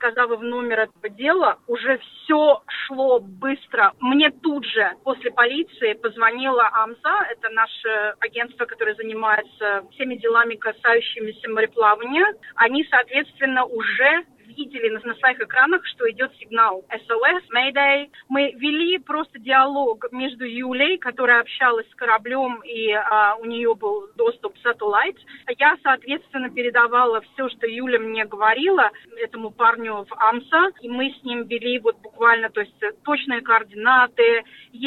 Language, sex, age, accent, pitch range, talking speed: Russian, female, 30-49, native, 225-275 Hz, 125 wpm